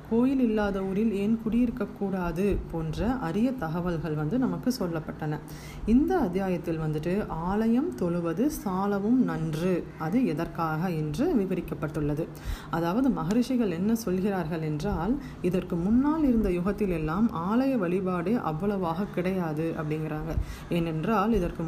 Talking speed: 100 wpm